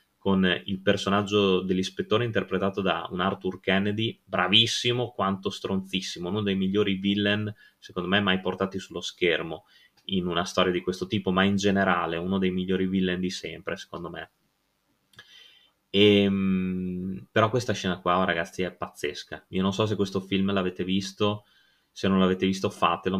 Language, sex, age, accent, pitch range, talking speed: Italian, male, 20-39, native, 95-105 Hz, 155 wpm